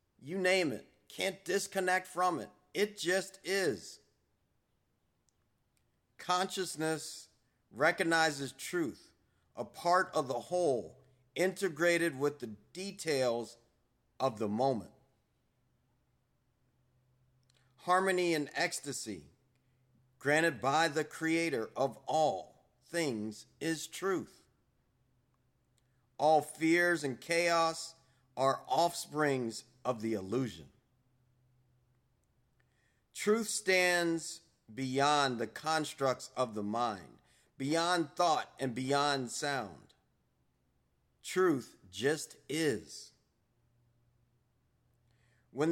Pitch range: 125-165 Hz